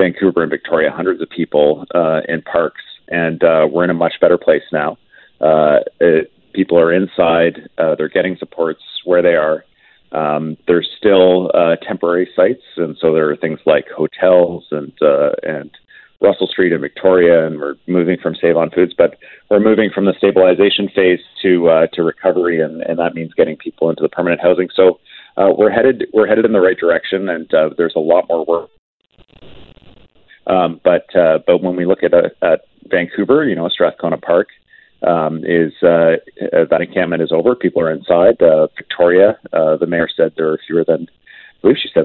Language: English